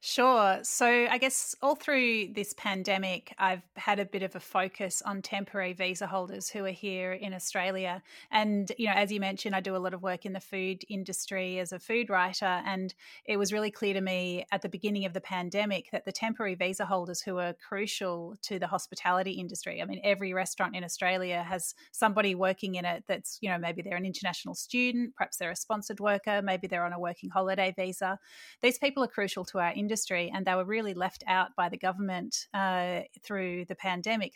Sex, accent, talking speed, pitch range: female, Australian, 210 wpm, 185-210 Hz